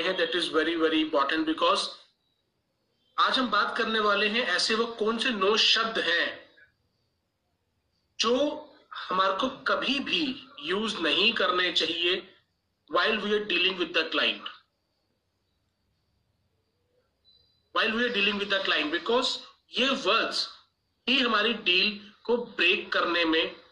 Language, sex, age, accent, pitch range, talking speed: Hindi, male, 30-49, native, 165-275 Hz, 115 wpm